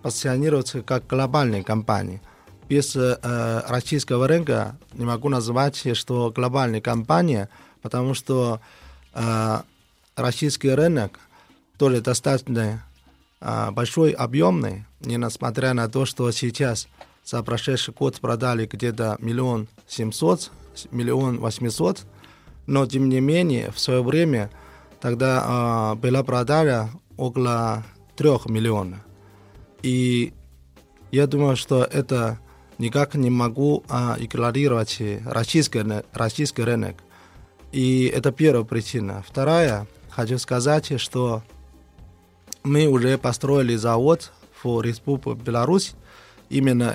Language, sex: Russian, male